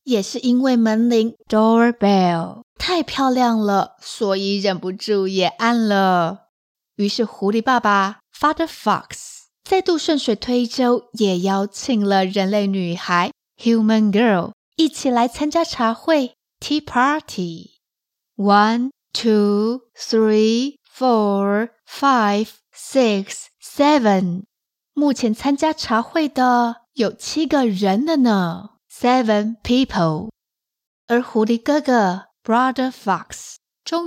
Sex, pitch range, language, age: female, 205-275 Hz, Chinese, 20-39